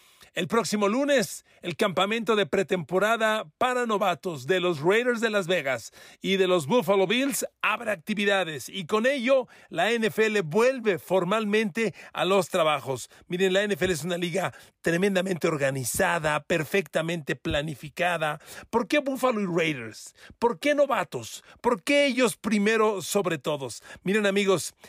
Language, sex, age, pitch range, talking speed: Spanish, male, 40-59, 160-215 Hz, 140 wpm